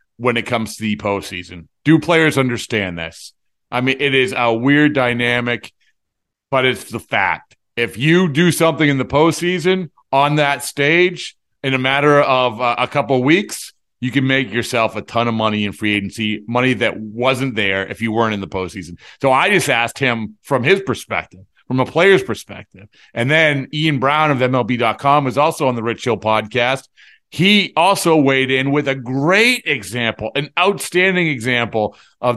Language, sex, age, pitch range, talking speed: English, male, 40-59, 115-145 Hz, 180 wpm